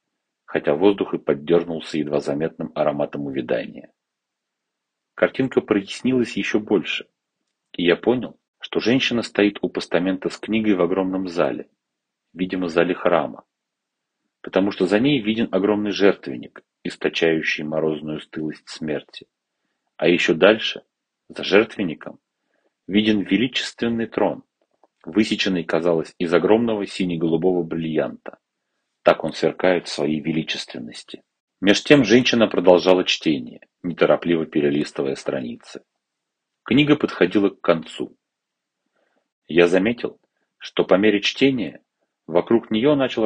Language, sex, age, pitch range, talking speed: Russian, male, 40-59, 80-105 Hz, 110 wpm